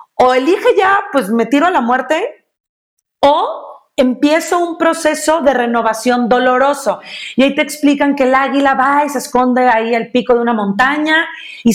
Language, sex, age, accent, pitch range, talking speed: Spanish, female, 40-59, Mexican, 235-310 Hz, 175 wpm